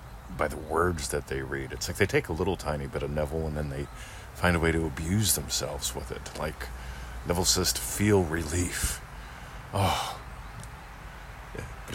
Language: English